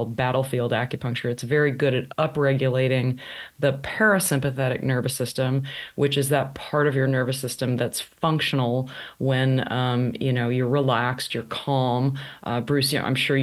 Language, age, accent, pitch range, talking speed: English, 30-49, American, 125-140 Hz, 150 wpm